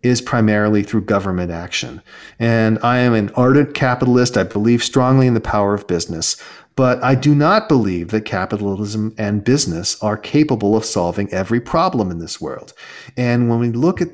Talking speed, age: 180 wpm, 40-59